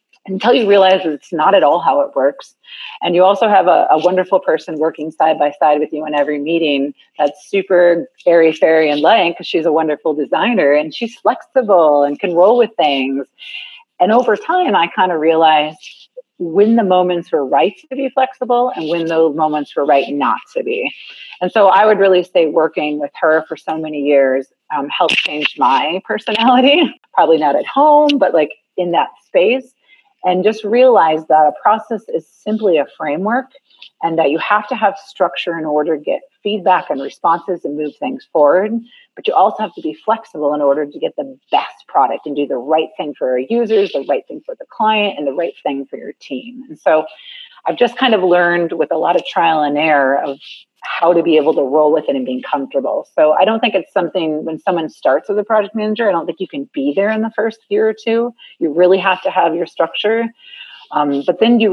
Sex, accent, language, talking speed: female, American, English, 215 wpm